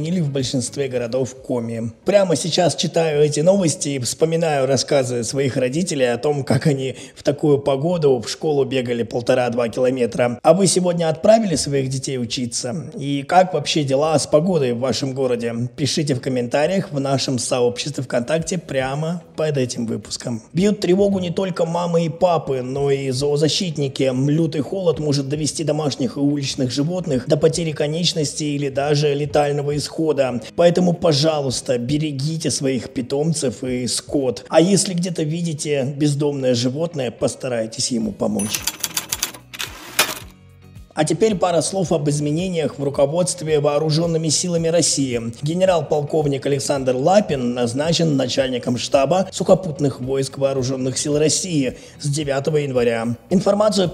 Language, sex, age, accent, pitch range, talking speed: Russian, male, 20-39, native, 130-160 Hz, 135 wpm